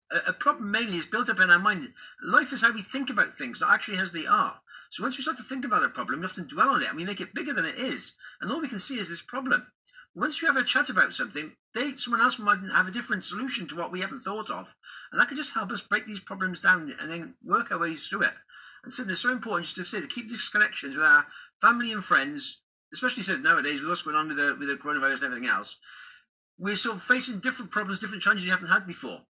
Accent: British